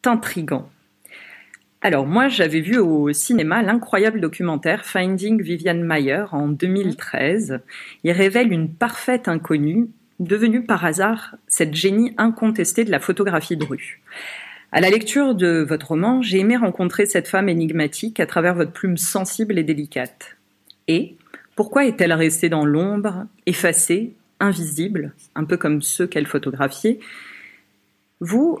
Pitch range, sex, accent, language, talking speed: 165-215 Hz, female, French, French, 135 wpm